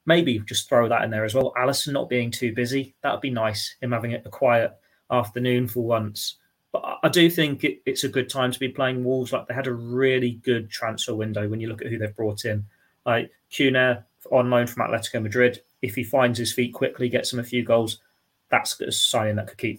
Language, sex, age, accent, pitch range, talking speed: English, male, 20-39, British, 115-130 Hz, 235 wpm